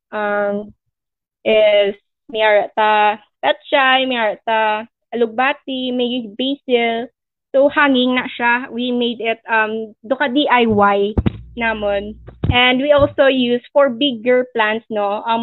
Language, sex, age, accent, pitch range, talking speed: English, female, 20-39, Filipino, 220-260 Hz, 115 wpm